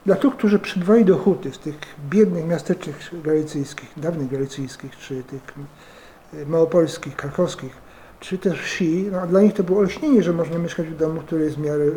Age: 50-69